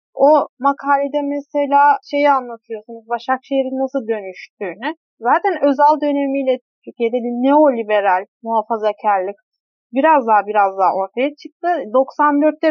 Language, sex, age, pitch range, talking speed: Turkish, female, 30-49, 245-310 Hz, 100 wpm